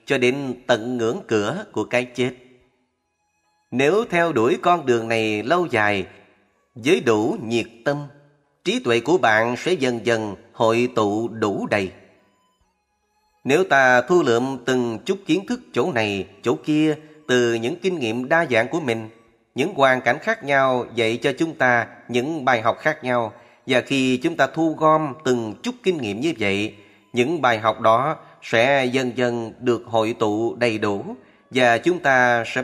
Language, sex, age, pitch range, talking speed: Vietnamese, male, 30-49, 115-145 Hz, 170 wpm